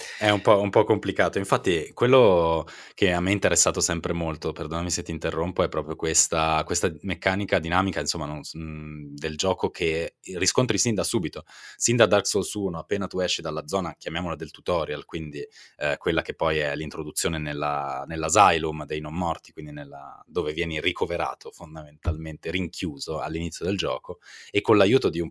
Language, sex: Italian, male